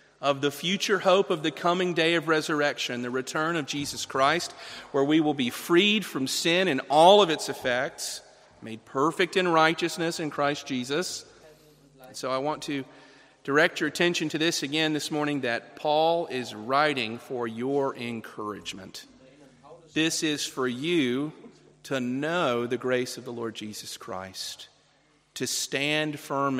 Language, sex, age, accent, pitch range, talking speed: English, male, 40-59, American, 125-155 Hz, 155 wpm